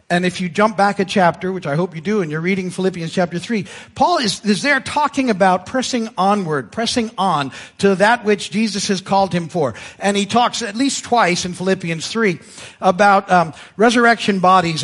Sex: male